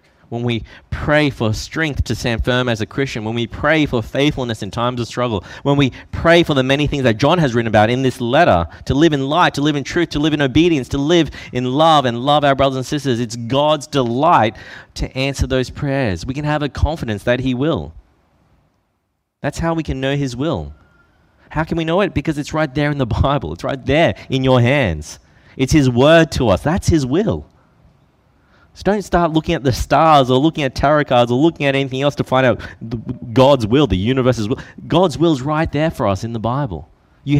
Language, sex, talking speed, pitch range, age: English, male, 225 wpm, 115-150 Hz, 30-49